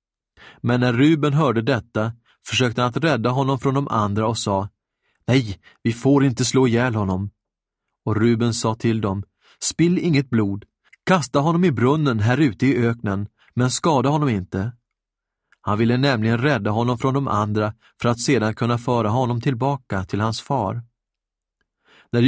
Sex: male